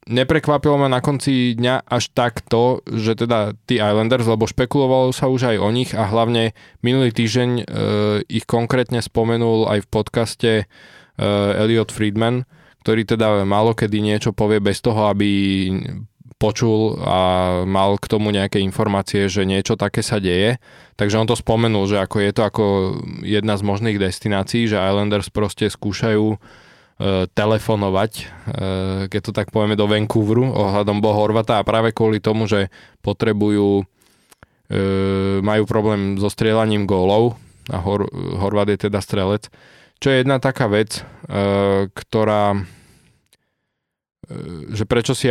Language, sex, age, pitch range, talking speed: Slovak, male, 20-39, 105-115 Hz, 140 wpm